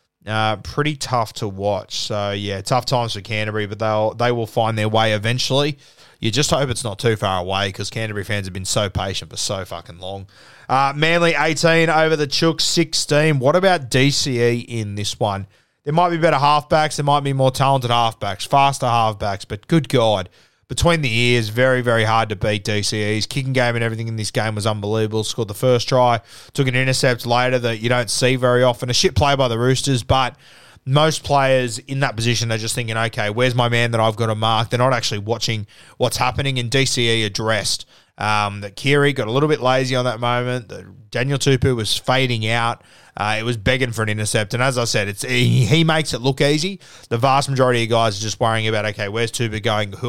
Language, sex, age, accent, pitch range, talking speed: English, male, 20-39, Australian, 110-135 Hz, 215 wpm